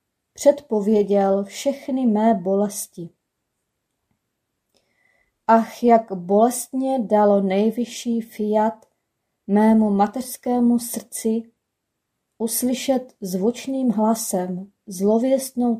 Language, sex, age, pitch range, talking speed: Czech, female, 20-39, 200-240 Hz, 65 wpm